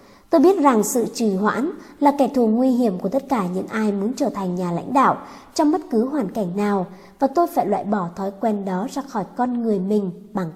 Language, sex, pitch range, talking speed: Vietnamese, male, 200-265 Hz, 240 wpm